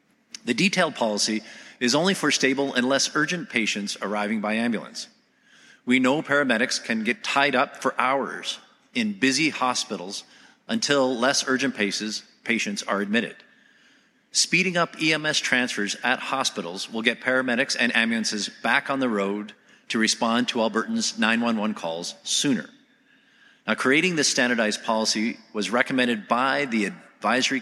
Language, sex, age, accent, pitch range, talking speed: English, male, 40-59, American, 110-160 Hz, 140 wpm